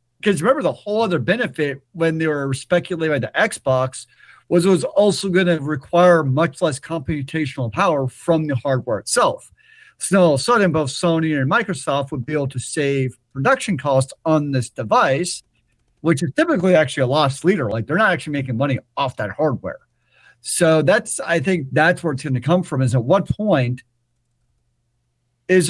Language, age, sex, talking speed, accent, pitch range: English, 50-69, male, 185 wpm, American, 125-175 Hz